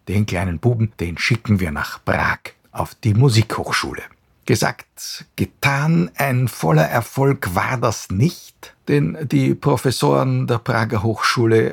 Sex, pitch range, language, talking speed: male, 95-120 Hz, German, 130 wpm